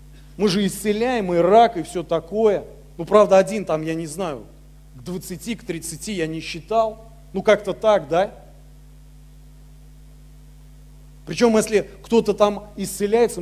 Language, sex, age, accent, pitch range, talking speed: Russian, male, 40-59, native, 145-195 Hz, 140 wpm